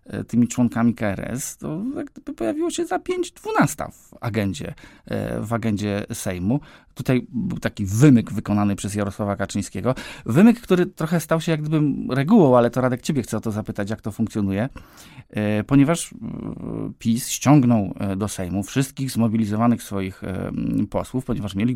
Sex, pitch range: male, 105-160 Hz